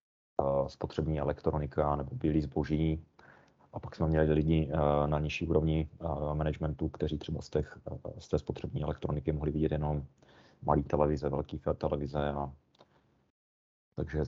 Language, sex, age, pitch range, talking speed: Czech, male, 30-49, 75-85 Hz, 135 wpm